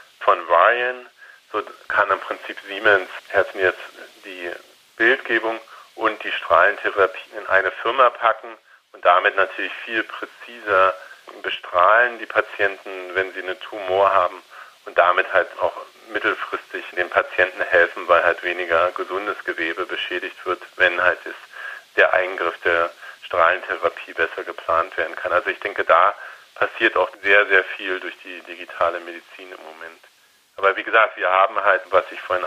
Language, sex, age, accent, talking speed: German, male, 40-59, German, 150 wpm